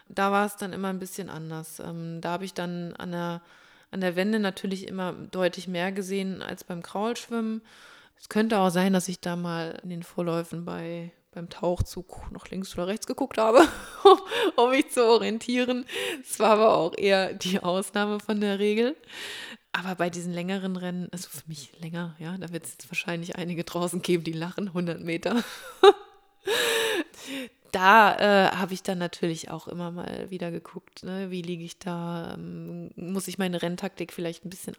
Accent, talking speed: German, 180 wpm